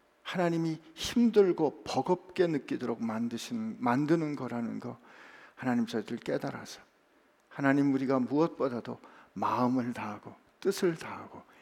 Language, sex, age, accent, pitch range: Korean, male, 60-79, native, 125-170 Hz